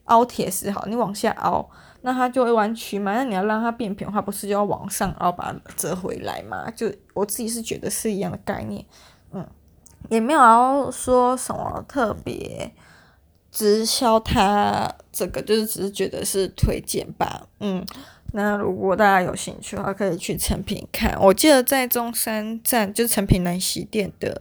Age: 20-39